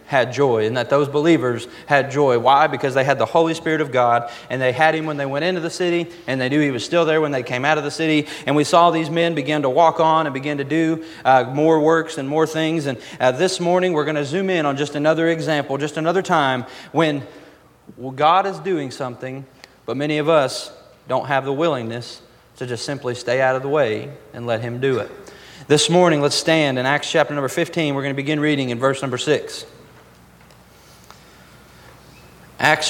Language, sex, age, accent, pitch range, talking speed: English, male, 30-49, American, 130-165 Hz, 220 wpm